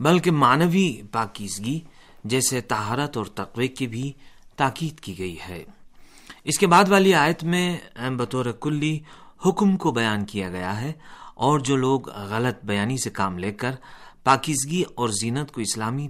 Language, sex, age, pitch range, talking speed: Urdu, male, 40-59, 110-150 Hz, 155 wpm